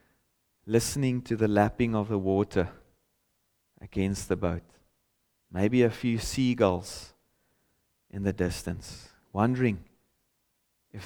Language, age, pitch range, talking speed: English, 30-49, 100-130 Hz, 105 wpm